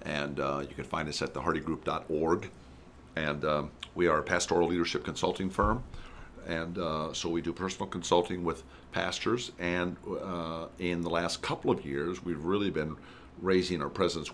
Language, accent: English, American